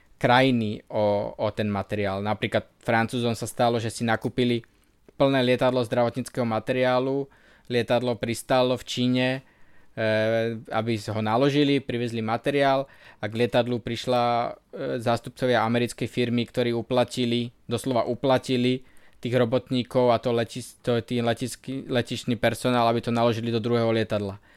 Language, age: Slovak, 20-39